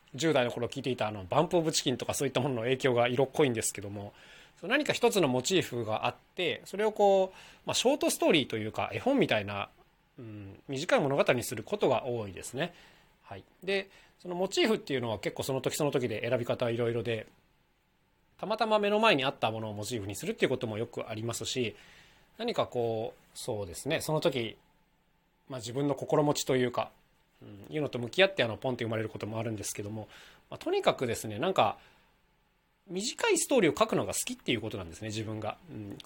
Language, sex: Japanese, male